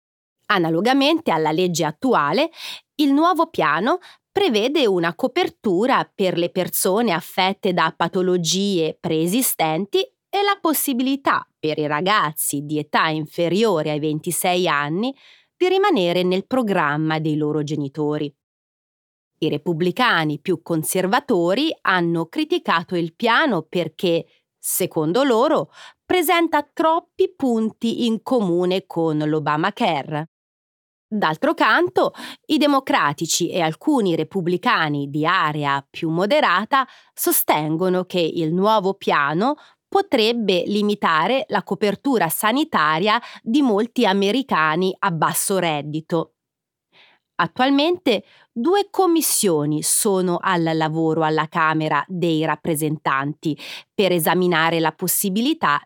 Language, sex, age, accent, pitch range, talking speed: Italian, female, 30-49, native, 155-250 Hz, 100 wpm